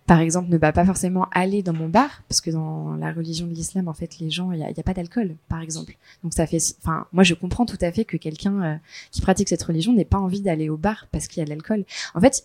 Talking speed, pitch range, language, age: 285 wpm, 165-205 Hz, French, 20-39